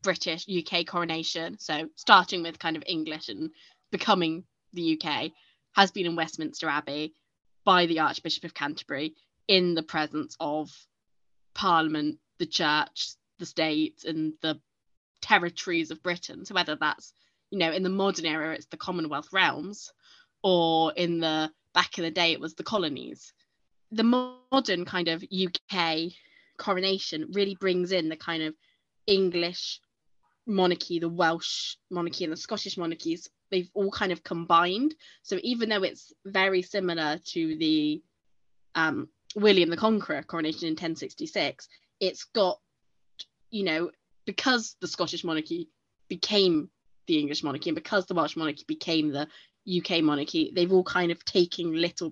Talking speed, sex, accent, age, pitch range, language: 150 wpm, female, British, 20-39, 160-190 Hz, English